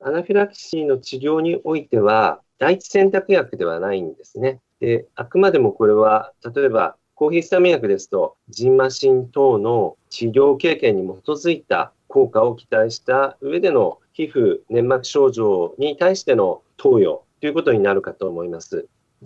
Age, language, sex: 40-59, Japanese, male